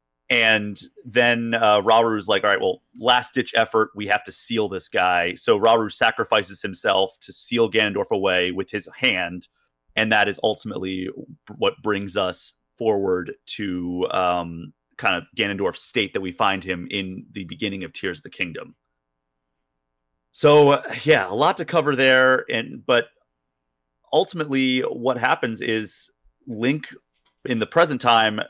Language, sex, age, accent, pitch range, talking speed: English, male, 30-49, American, 90-120 Hz, 150 wpm